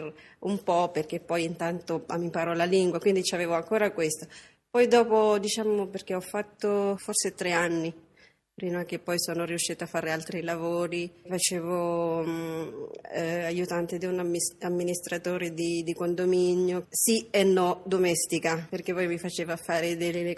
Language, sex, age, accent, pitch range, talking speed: Italian, female, 20-39, native, 170-195 Hz, 150 wpm